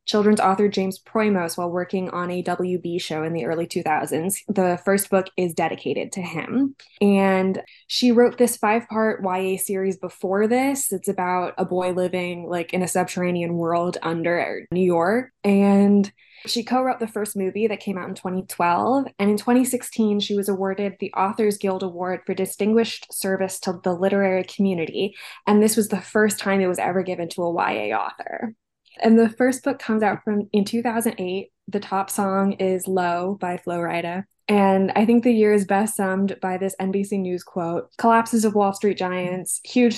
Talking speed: 180 wpm